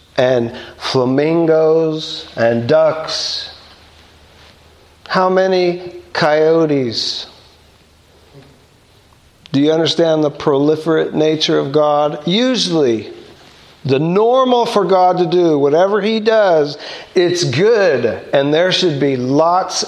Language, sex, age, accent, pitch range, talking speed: English, male, 50-69, American, 150-215 Hz, 95 wpm